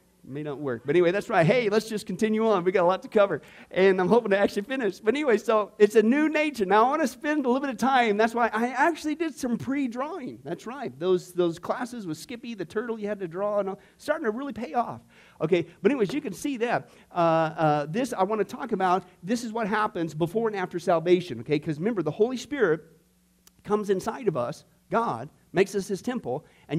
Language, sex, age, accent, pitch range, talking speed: English, male, 50-69, American, 165-215 Hz, 240 wpm